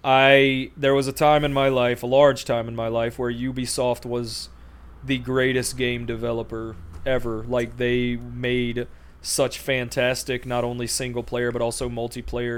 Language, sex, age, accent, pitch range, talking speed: English, male, 20-39, American, 120-135 Hz, 160 wpm